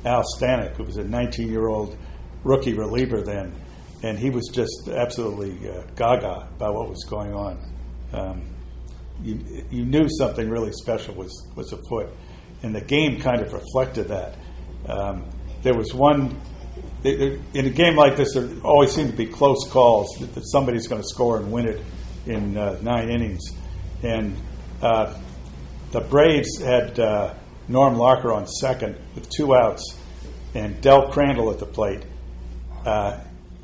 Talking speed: 160 wpm